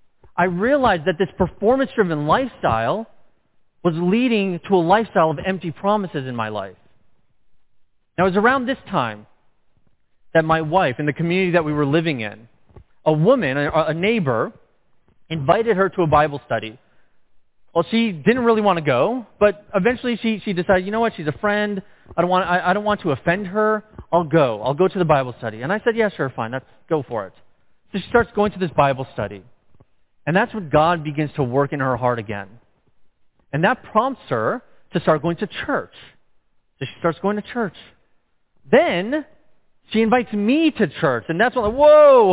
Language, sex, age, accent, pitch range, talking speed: English, male, 30-49, American, 150-215 Hz, 185 wpm